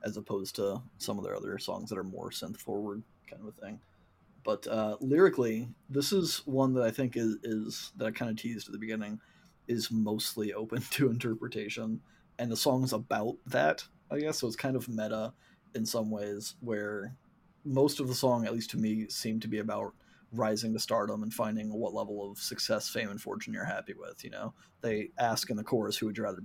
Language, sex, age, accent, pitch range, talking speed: English, male, 30-49, American, 105-130 Hz, 215 wpm